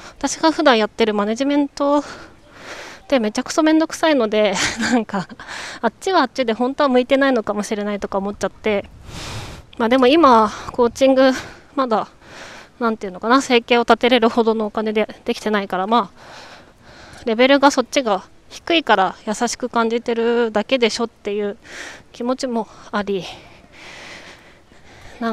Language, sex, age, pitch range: Japanese, female, 20-39, 205-255 Hz